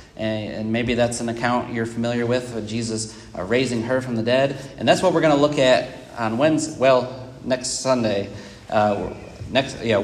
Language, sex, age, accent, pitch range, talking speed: English, male, 30-49, American, 110-130 Hz, 190 wpm